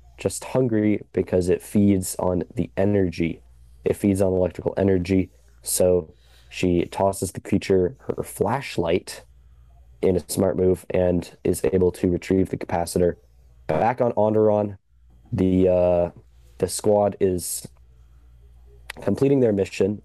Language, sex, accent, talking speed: English, male, American, 125 wpm